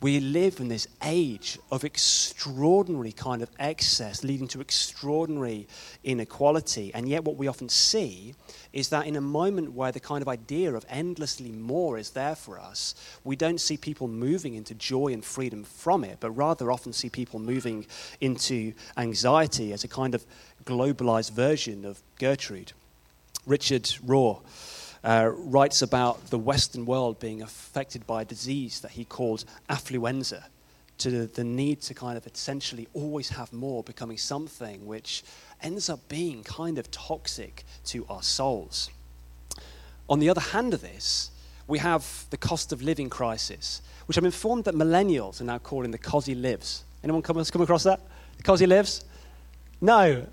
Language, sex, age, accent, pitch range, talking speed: English, male, 30-49, British, 115-145 Hz, 165 wpm